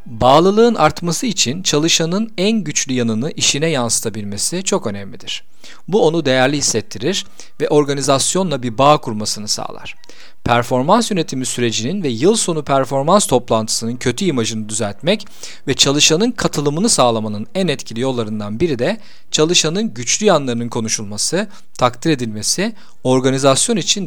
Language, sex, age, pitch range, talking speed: Turkish, male, 40-59, 120-185 Hz, 120 wpm